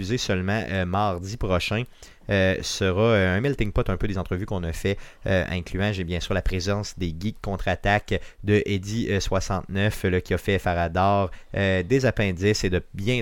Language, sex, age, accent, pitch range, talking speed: French, male, 30-49, Canadian, 90-110 Hz, 170 wpm